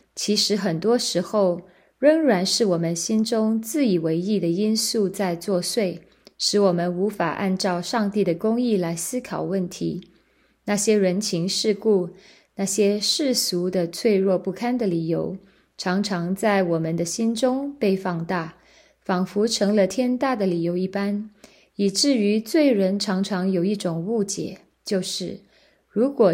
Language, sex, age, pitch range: Chinese, female, 20-39, 180-215 Hz